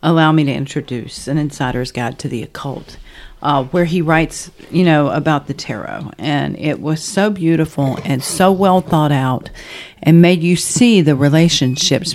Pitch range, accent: 140-170 Hz, American